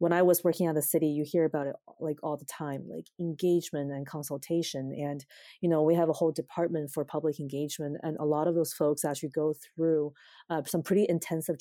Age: 20-39